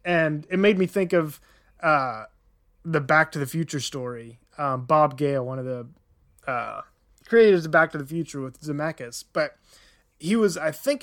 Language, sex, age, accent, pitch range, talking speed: English, male, 20-39, American, 135-165 Hz, 180 wpm